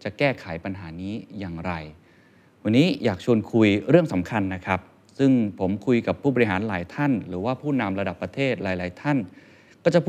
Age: 20-39